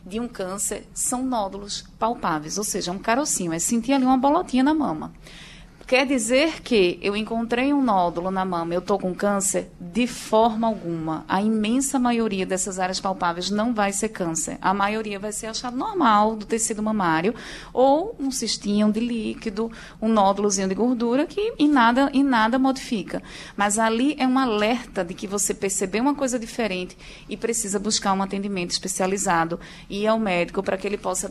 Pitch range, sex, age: 190-235 Hz, female, 20-39